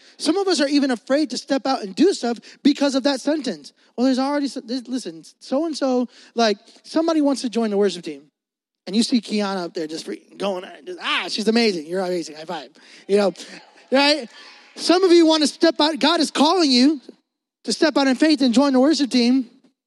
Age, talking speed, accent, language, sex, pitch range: 20-39, 205 wpm, American, English, male, 220-290 Hz